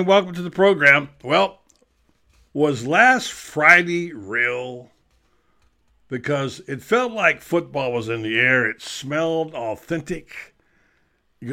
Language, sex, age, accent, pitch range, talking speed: English, male, 60-79, American, 115-150 Hz, 115 wpm